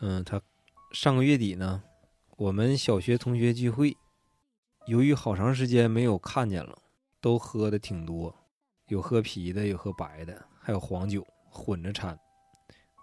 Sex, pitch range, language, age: male, 100-130 Hz, Chinese, 20-39